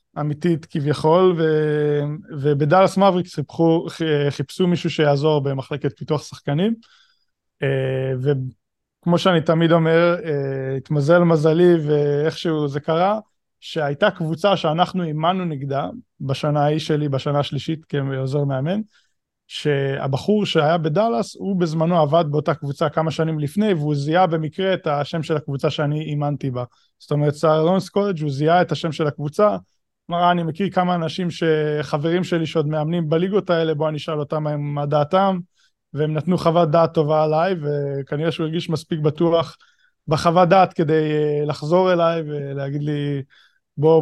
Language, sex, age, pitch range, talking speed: Hebrew, male, 20-39, 145-175 Hz, 135 wpm